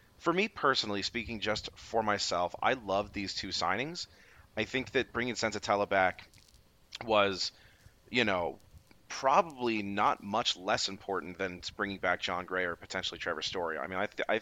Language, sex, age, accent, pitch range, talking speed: English, male, 30-49, American, 95-115 Hz, 160 wpm